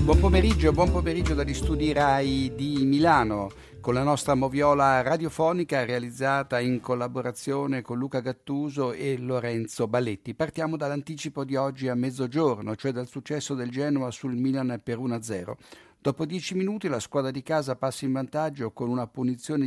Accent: native